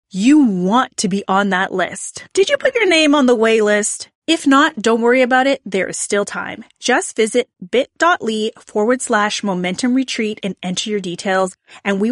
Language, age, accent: English, 30-49, American